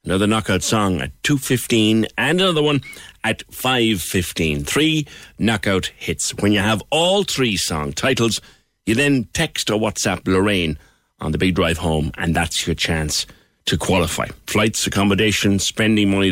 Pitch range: 80-110 Hz